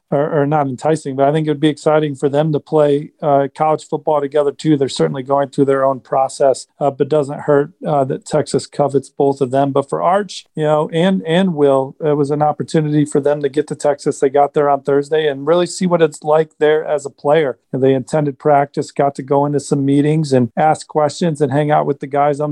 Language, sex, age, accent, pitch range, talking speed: English, male, 40-59, American, 140-155 Hz, 240 wpm